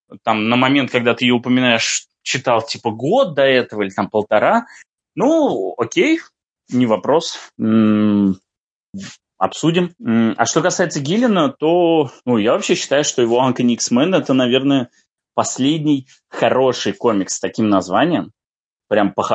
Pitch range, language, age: 110-145 Hz, Russian, 20-39